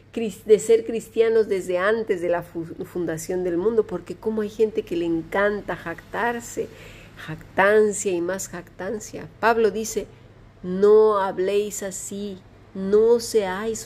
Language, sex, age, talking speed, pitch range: Spanish, female, 40-59, 125 wpm, 175-220 Hz